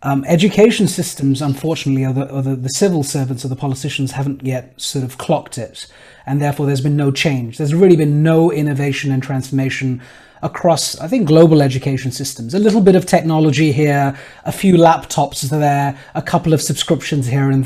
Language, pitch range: English, 135-170 Hz